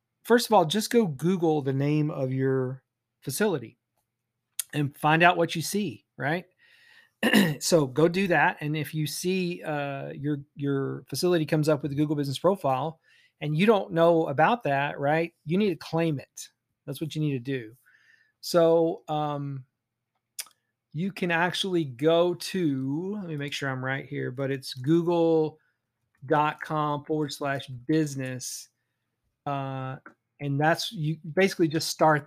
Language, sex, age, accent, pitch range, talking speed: English, male, 40-59, American, 135-160 Hz, 155 wpm